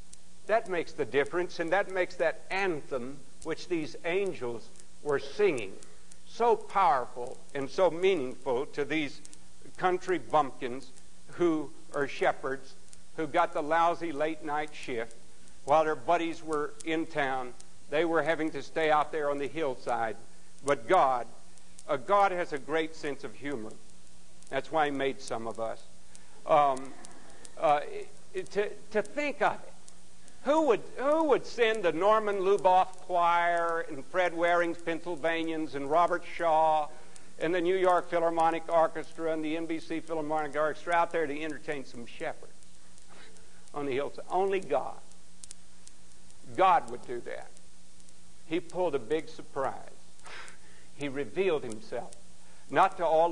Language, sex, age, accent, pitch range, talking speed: English, male, 60-79, American, 145-180 Hz, 140 wpm